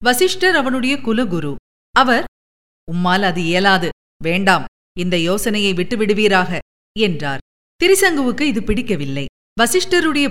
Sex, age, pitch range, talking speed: female, 50-69, 185-245 Hz, 95 wpm